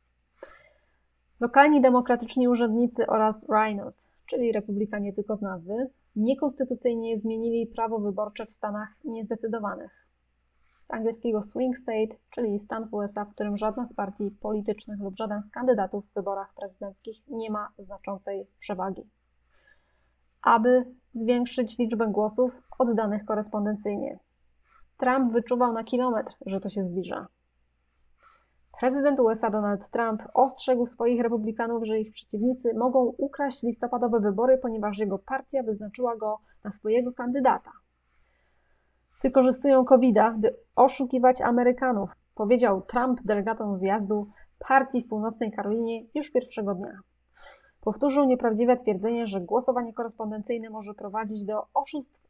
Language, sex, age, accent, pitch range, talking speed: Polish, female, 20-39, native, 205-250 Hz, 120 wpm